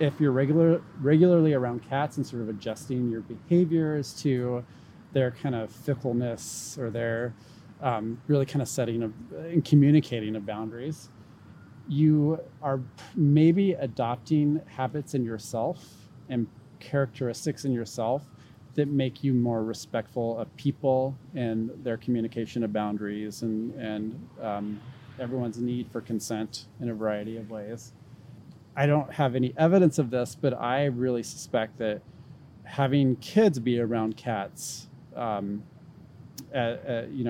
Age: 30-49